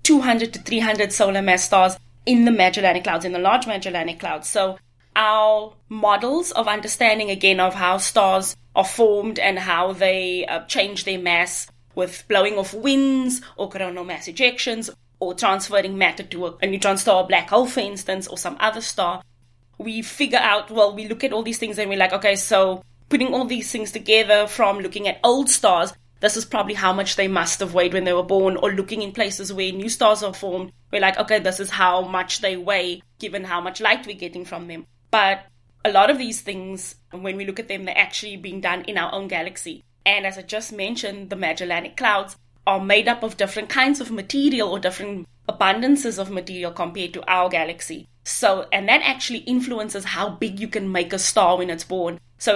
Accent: South African